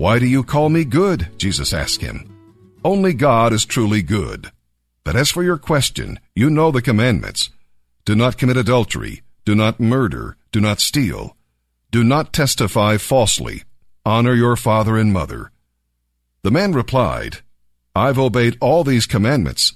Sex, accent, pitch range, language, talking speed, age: male, American, 90-125 Hz, English, 150 wpm, 50-69